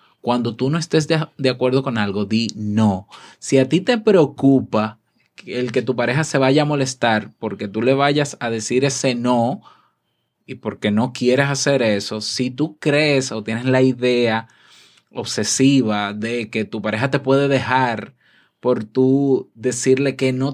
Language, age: Spanish, 20-39